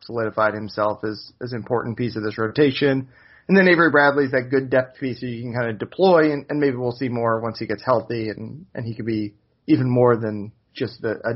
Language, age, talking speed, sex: English, 30-49, 240 wpm, male